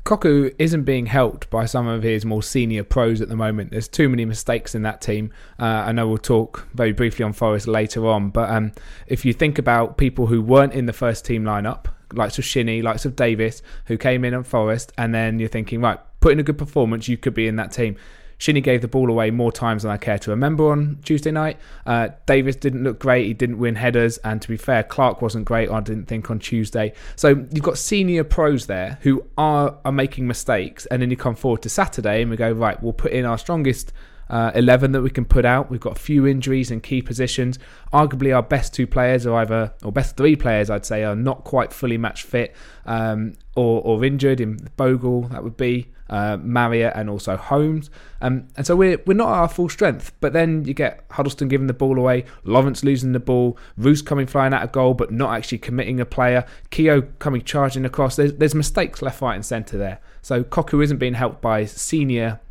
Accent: British